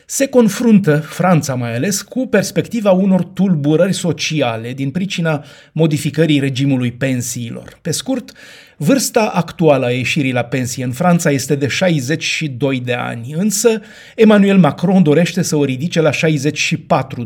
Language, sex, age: Romanian, male, 30-49